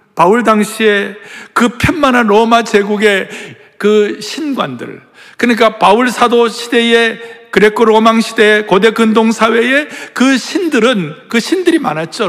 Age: 60-79